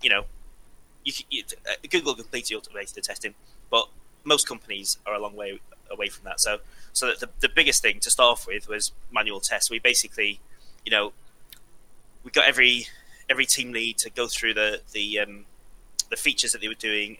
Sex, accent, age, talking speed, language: male, British, 20-39, 190 wpm, English